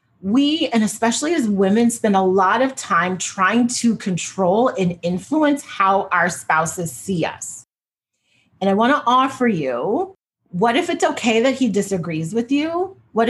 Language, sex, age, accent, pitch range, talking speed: English, female, 30-49, American, 185-250 Hz, 165 wpm